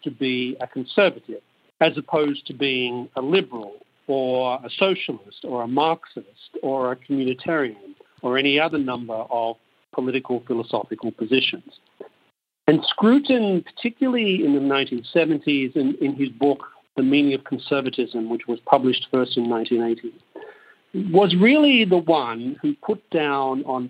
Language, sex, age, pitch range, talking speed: English, male, 50-69, 125-155 Hz, 140 wpm